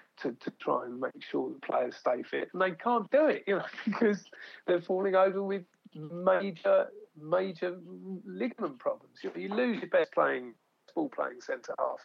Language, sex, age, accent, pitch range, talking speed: English, male, 50-69, British, 160-250 Hz, 175 wpm